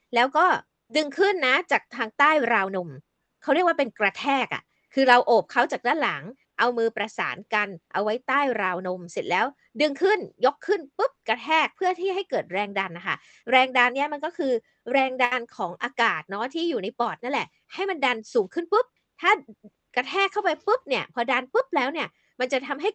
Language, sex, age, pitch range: Thai, female, 20-39, 225-325 Hz